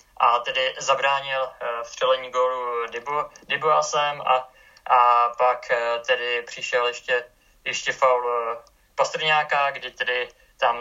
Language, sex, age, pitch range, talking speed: Czech, male, 20-39, 120-135 Hz, 105 wpm